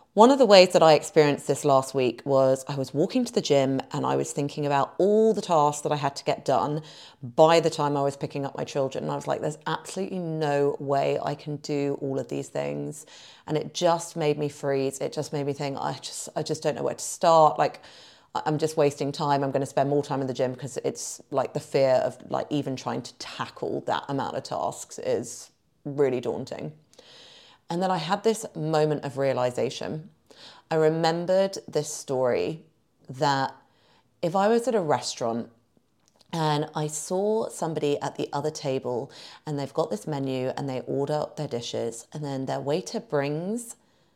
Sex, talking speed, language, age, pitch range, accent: female, 205 wpm, English, 30-49, 135-160 Hz, British